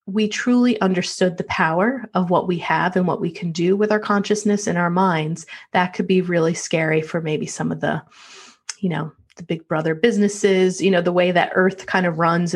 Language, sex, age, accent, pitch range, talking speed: English, female, 30-49, American, 170-210 Hz, 215 wpm